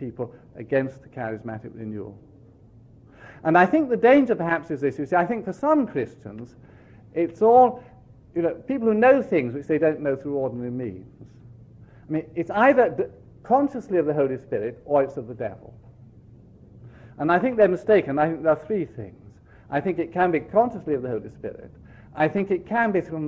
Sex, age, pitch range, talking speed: male, 50-69, 120-180 Hz, 195 wpm